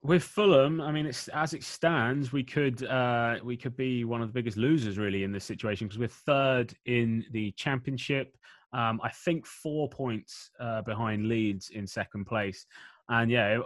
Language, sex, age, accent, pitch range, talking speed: English, male, 20-39, British, 105-130 Hz, 185 wpm